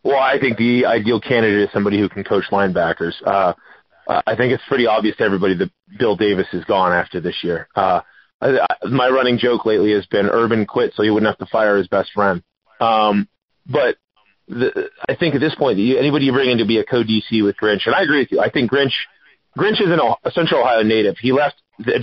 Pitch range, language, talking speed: 110-140 Hz, English, 230 wpm